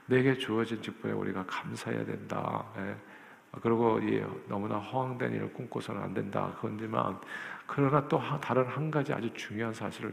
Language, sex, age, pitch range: Korean, male, 50-69, 105-130 Hz